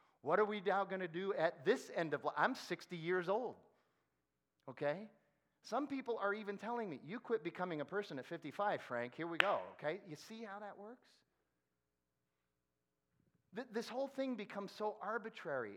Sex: male